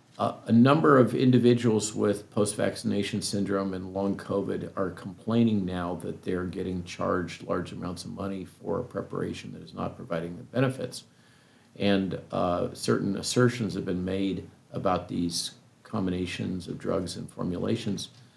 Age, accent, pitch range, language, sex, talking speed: 50-69, American, 95-120 Hz, English, male, 145 wpm